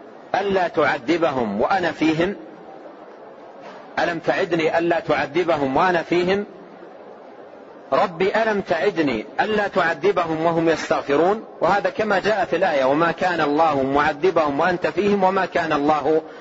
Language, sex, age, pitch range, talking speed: Arabic, male, 40-59, 160-195 Hz, 115 wpm